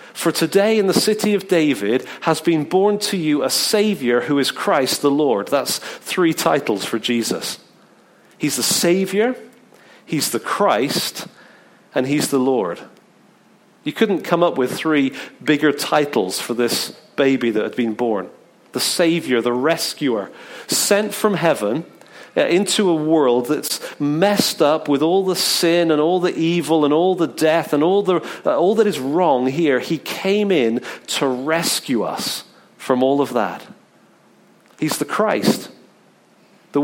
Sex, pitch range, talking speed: male, 140-185 Hz, 160 wpm